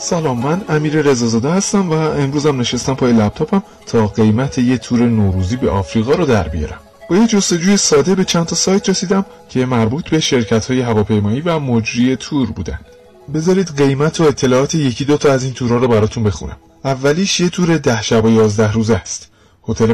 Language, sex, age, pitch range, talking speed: Persian, male, 30-49, 110-150 Hz, 185 wpm